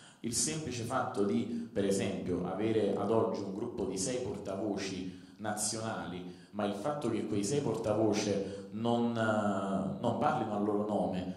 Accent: native